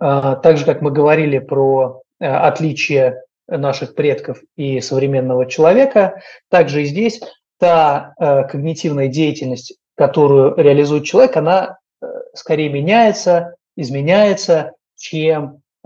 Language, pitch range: Russian, 135-160 Hz